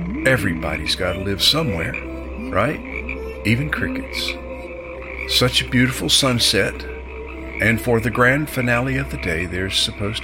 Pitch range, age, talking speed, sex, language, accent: 75-125 Hz, 60-79, 130 wpm, male, English, American